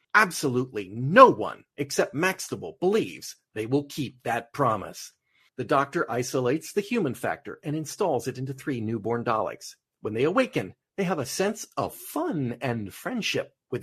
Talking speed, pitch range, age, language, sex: 155 wpm, 130-180 Hz, 40-59, English, male